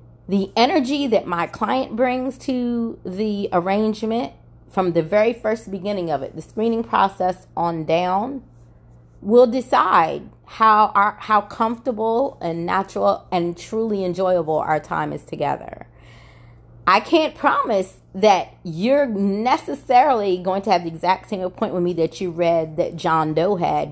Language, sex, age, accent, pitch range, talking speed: English, female, 30-49, American, 160-210 Hz, 145 wpm